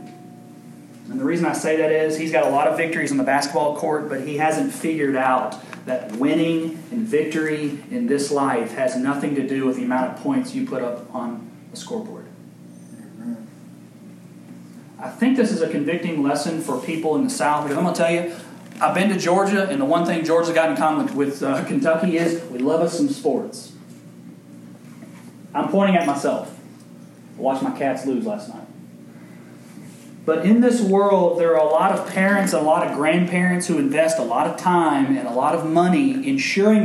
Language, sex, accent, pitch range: Italian, male, American, 140-215 Hz